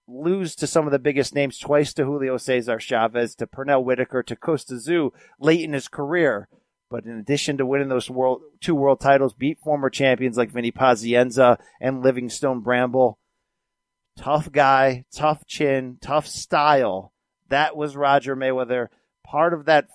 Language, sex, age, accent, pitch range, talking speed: English, male, 40-59, American, 130-160 Hz, 160 wpm